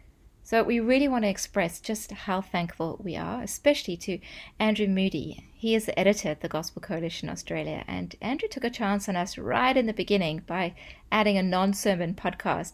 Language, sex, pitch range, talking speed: English, female, 170-225 Hz, 190 wpm